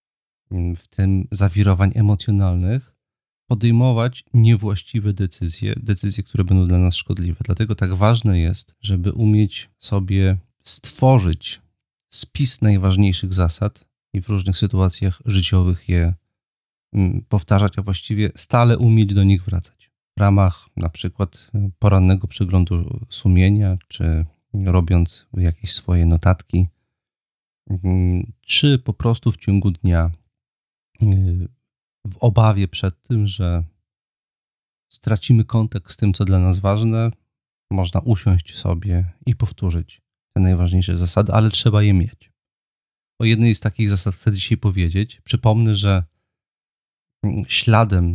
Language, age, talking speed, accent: Polish, 40-59, 115 wpm, native